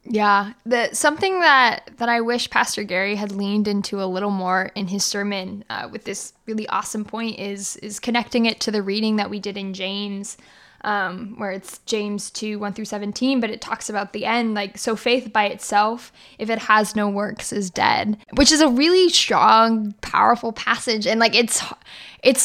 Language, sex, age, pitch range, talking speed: English, female, 10-29, 205-230 Hz, 195 wpm